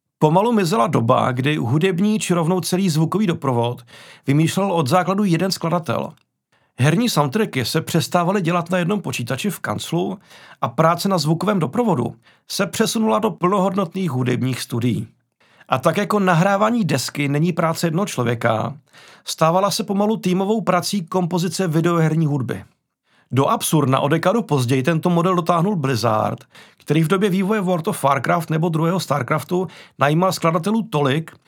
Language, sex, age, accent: Czech, male, 40-59, native